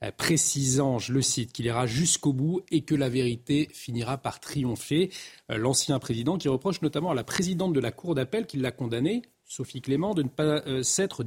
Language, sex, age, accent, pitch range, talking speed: French, male, 40-59, French, 125-155 Hz, 190 wpm